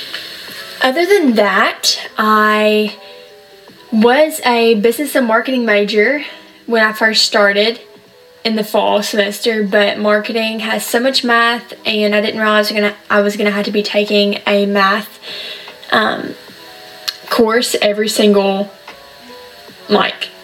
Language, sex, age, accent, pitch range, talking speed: English, female, 10-29, American, 210-235 Hz, 125 wpm